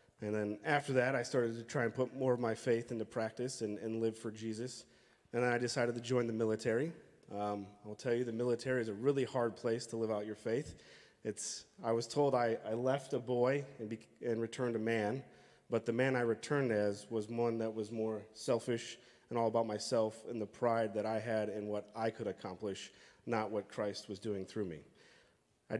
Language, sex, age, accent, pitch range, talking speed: English, male, 30-49, American, 105-120 Hz, 220 wpm